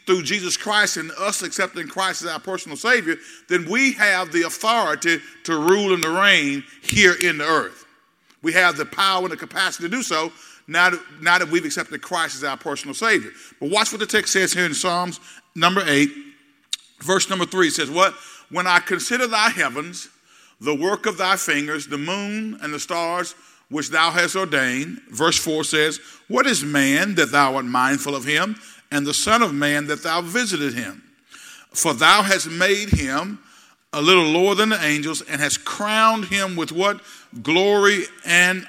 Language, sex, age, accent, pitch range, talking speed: English, male, 50-69, American, 160-205 Hz, 185 wpm